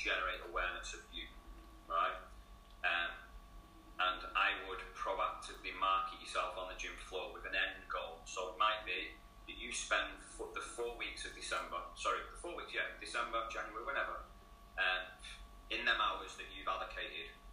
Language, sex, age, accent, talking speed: English, male, 30-49, British, 165 wpm